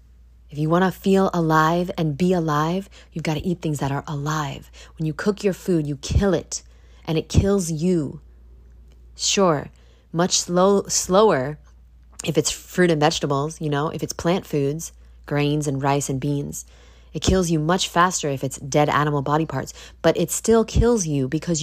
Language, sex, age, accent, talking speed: English, female, 30-49, American, 185 wpm